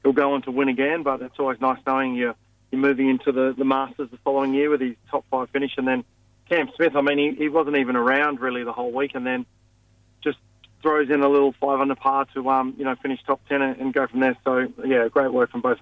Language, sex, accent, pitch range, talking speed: English, male, Australian, 120-140 Hz, 265 wpm